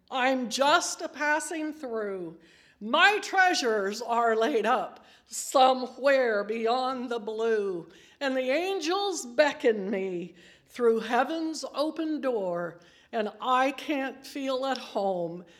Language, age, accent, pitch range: English, 60-79, American, 210-275 Hz